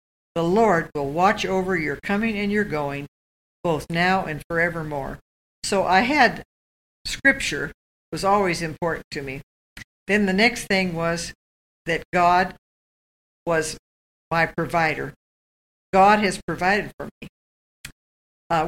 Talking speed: 125 wpm